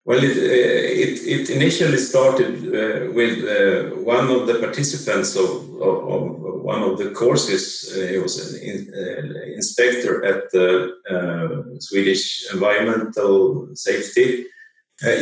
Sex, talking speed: male, 135 wpm